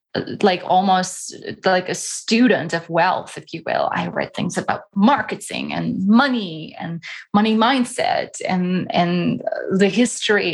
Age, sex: 20-39, female